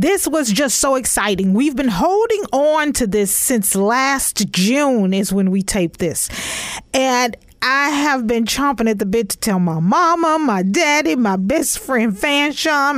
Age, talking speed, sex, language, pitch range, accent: 40-59, 170 wpm, female, English, 230-320 Hz, American